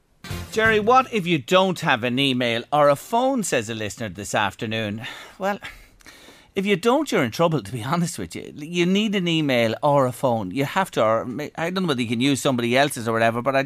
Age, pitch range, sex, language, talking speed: 40-59, 120-195 Hz, male, English, 230 wpm